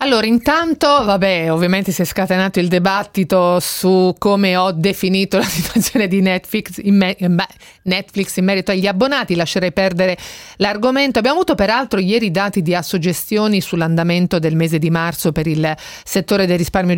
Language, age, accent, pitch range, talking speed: Italian, 30-49, native, 165-195 Hz, 165 wpm